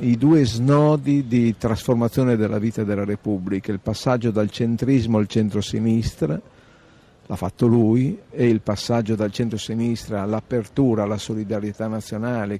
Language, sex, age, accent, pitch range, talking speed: Italian, male, 50-69, native, 105-125 Hz, 130 wpm